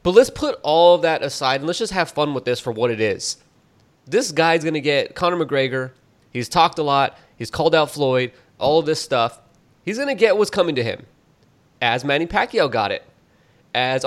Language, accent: English, American